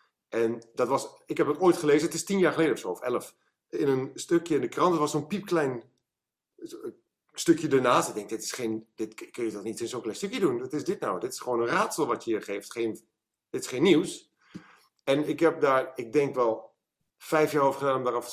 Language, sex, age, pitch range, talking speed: Dutch, male, 50-69, 125-165 Hz, 240 wpm